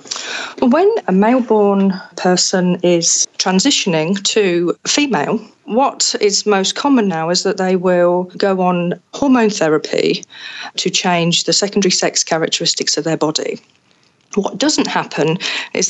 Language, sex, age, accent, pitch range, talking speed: English, female, 40-59, British, 175-215 Hz, 130 wpm